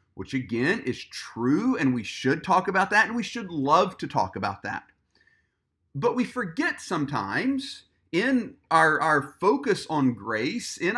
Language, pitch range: English, 150-245 Hz